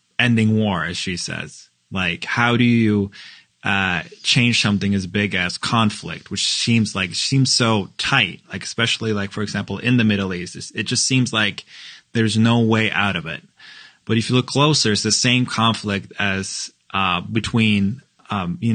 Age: 20-39